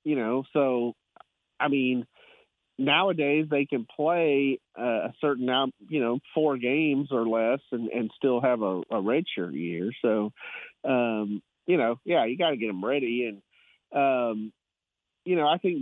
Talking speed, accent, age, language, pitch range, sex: 160 wpm, American, 40-59, English, 125-145 Hz, male